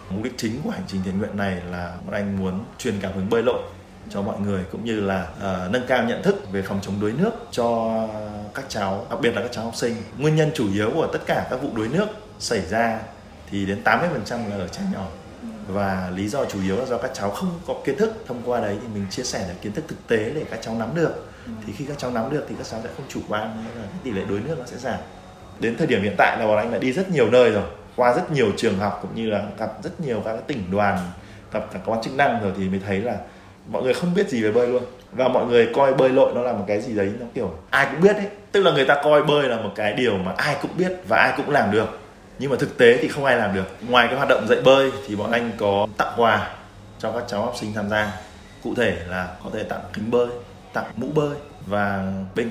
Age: 20-39